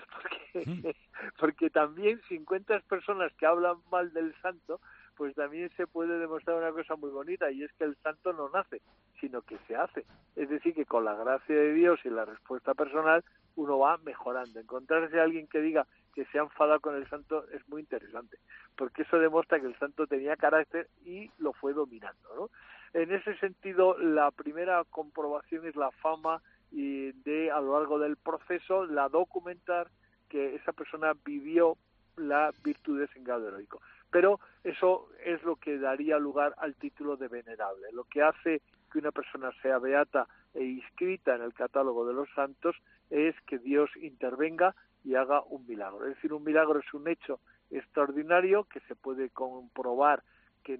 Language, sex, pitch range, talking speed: Spanish, male, 135-170 Hz, 175 wpm